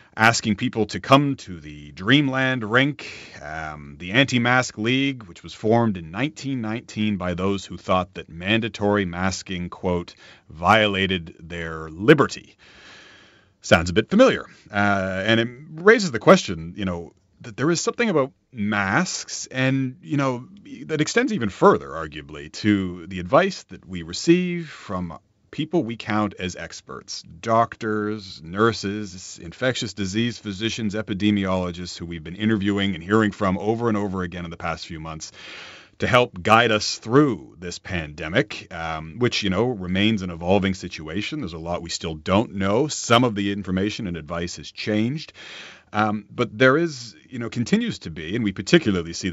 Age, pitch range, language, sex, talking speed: 30-49, 90-120 Hz, English, male, 155 wpm